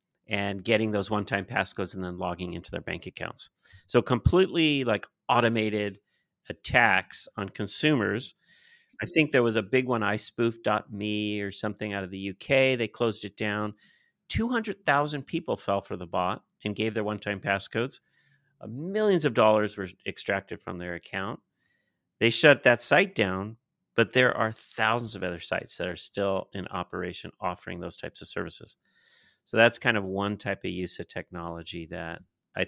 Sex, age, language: male, 40-59, English